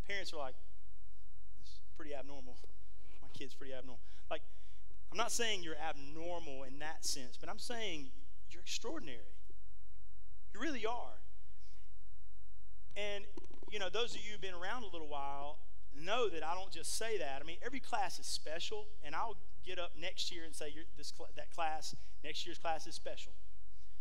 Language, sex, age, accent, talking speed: English, male, 40-59, American, 170 wpm